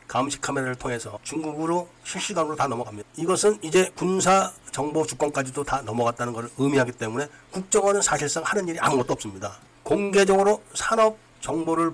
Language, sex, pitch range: Korean, male, 130-180 Hz